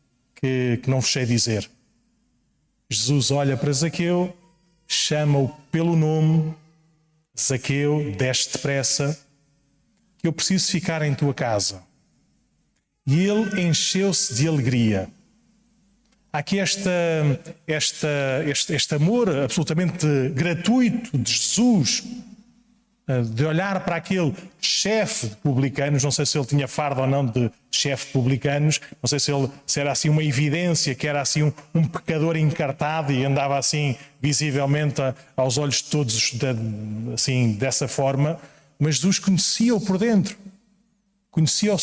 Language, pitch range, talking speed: Portuguese, 135-170 Hz, 125 wpm